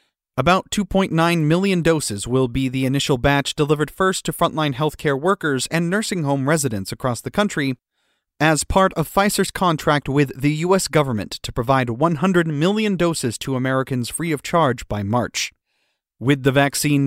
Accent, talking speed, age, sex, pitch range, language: American, 160 wpm, 30-49, male, 130-165 Hz, English